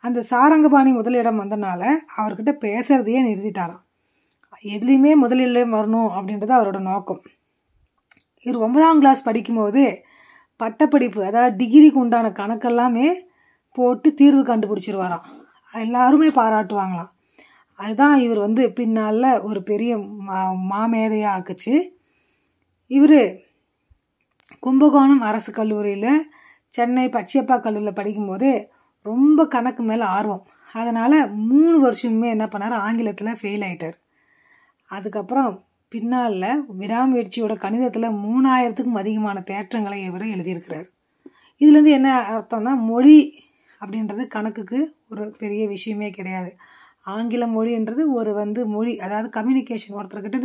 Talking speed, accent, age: 100 wpm, native, 20-39